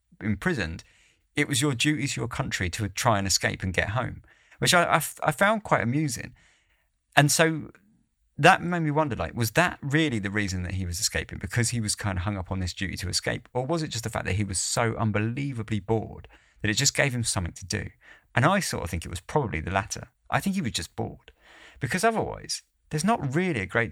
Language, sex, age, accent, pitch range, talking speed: English, male, 30-49, British, 90-125 Hz, 235 wpm